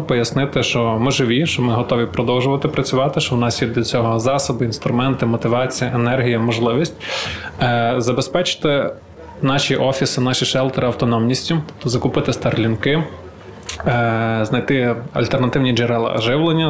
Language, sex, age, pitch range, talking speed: Ukrainian, male, 20-39, 120-140 Hz, 120 wpm